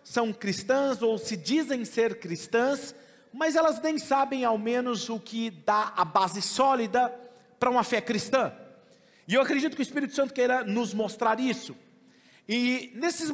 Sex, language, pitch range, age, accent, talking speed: male, Portuguese, 230-280 Hz, 40-59, Brazilian, 160 wpm